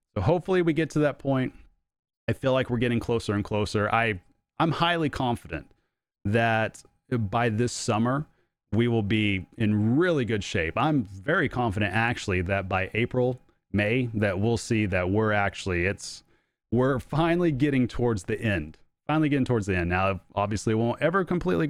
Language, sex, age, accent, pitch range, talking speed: English, male, 30-49, American, 110-140 Hz, 175 wpm